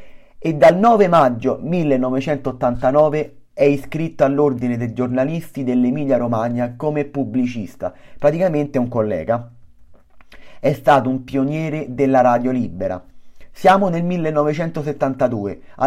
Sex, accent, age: male, native, 30-49